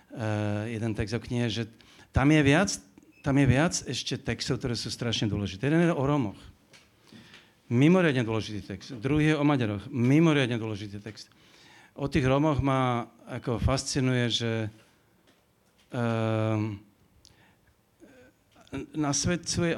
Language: Slovak